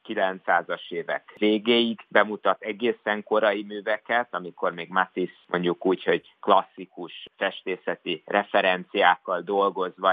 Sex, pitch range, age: male, 95-110 Hz, 50-69